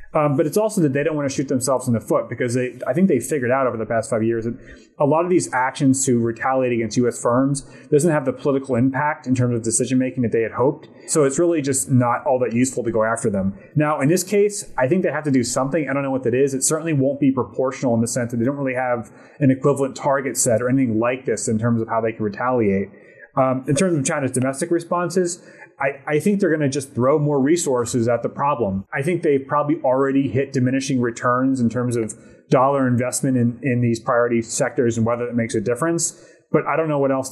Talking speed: 255 wpm